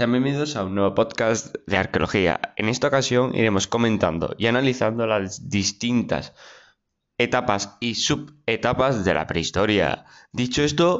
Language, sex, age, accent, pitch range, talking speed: Spanish, male, 20-39, Spanish, 105-130 Hz, 130 wpm